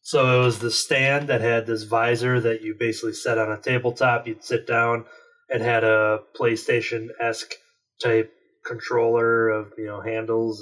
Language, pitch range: English, 110-125 Hz